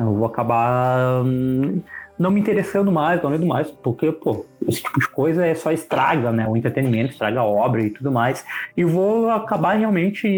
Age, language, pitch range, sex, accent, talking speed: 20-39, Portuguese, 115-150 Hz, male, Brazilian, 190 wpm